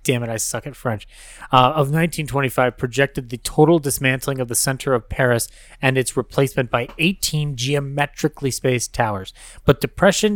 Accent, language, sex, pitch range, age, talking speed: American, English, male, 125-145 Hz, 30-49, 160 wpm